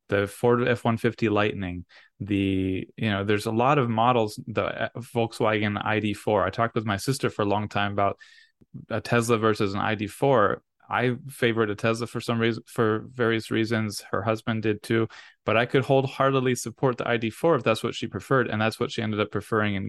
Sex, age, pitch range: male, 20-39, 100-120 Hz